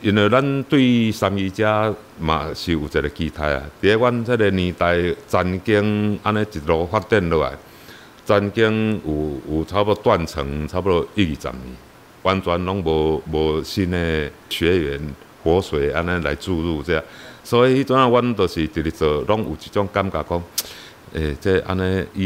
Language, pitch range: Chinese, 80-100 Hz